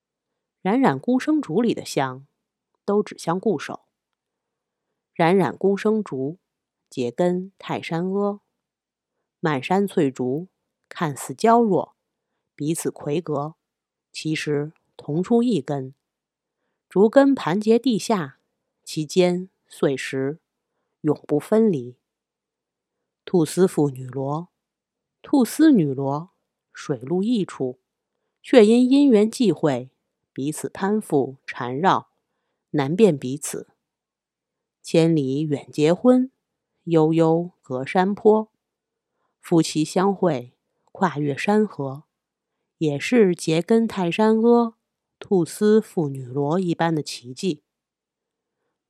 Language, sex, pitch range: Chinese, female, 145-215 Hz